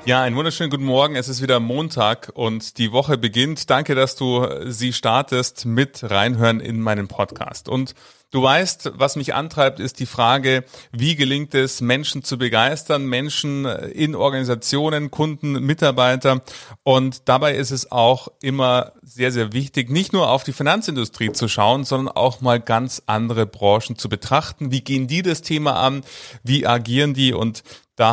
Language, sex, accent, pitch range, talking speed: German, male, German, 120-140 Hz, 165 wpm